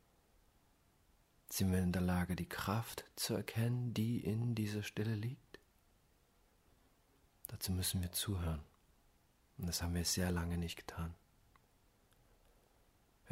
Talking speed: 120 wpm